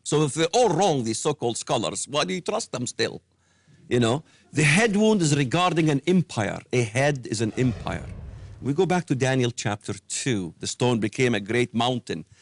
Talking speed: 200 wpm